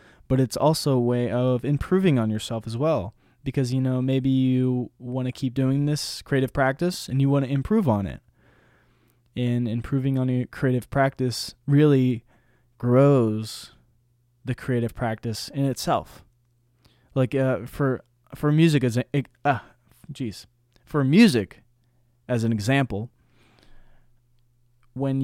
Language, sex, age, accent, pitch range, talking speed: English, male, 20-39, American, 120-135 Hz, 140 wpm